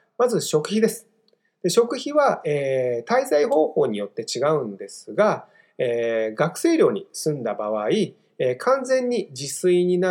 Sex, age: male, 30-49